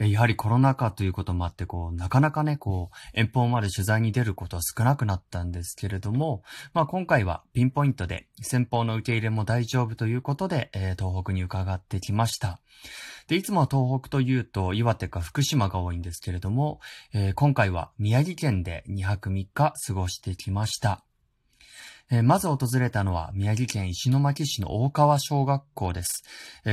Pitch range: 100-125 Hz